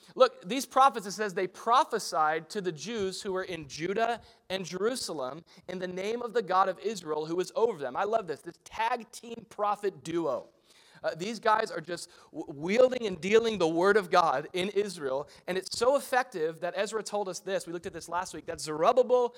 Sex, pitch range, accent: male, 160-215 Hz, American